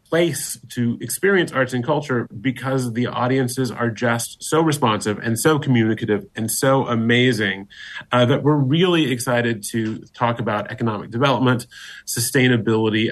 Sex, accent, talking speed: male, American, 135 wpm